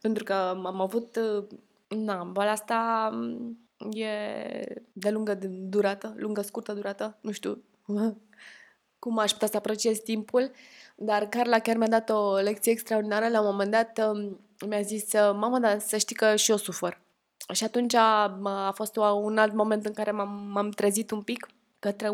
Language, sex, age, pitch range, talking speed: Romanian, female, 20-39, 210-230 Hz, 155 wpm